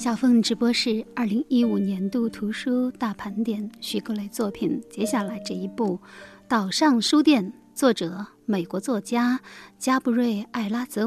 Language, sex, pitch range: Chinese, female, 200-260 Hz